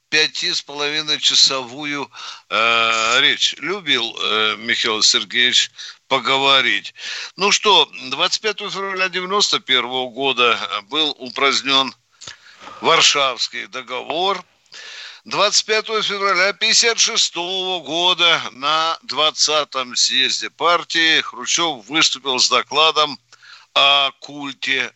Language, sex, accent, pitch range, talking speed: Russian, male, native, 145-185 Hz, 85 wpm